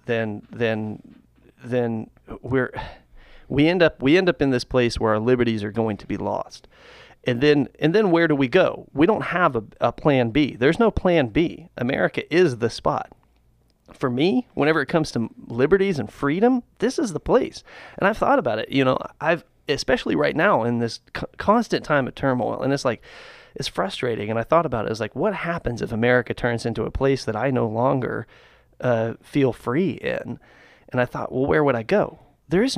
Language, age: English, 30-49